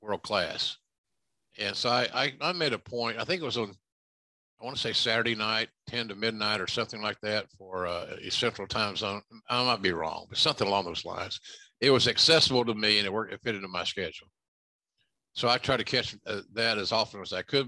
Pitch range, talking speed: 95-125 Hz, 235 wpm